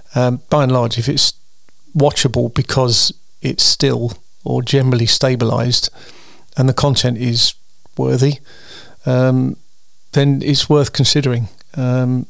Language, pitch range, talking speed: English, 125-145 Hz, 115 wpm